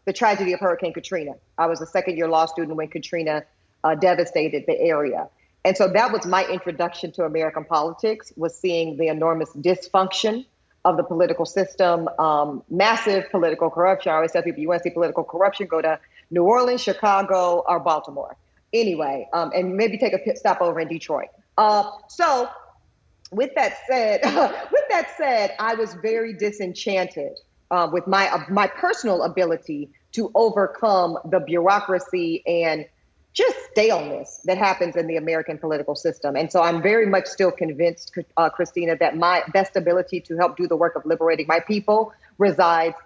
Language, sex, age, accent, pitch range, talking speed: English, female, 40-59, American, 165-195 Hz, 170 wpm